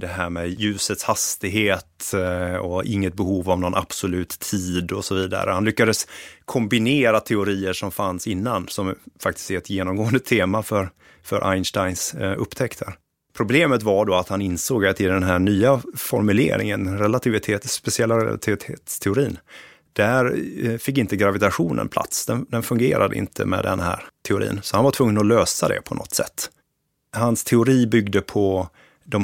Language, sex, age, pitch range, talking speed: Swedish, male, 30-49, 95-110 Hz, 155 wpm